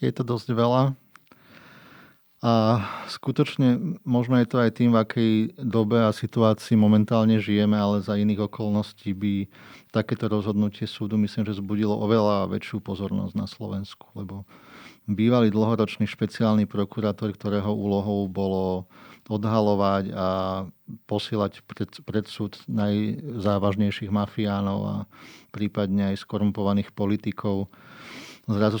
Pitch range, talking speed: 100-110 Hz, 115 wpm